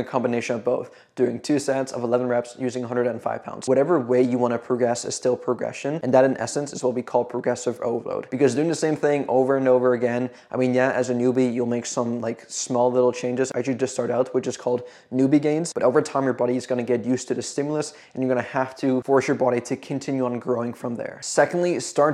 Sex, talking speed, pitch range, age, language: male, 255 wpm, 125-135 Hz, 20-39, English